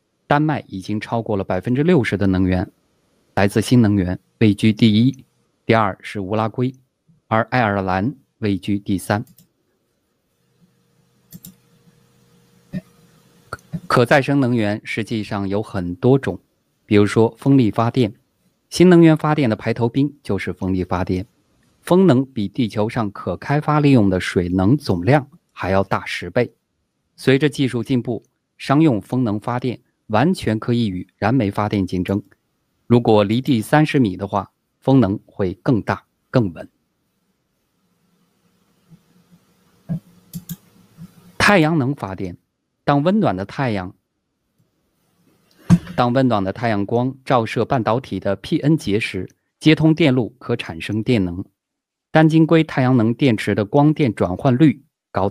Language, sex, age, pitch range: Chinese, male, 20-39, 100-145 Hz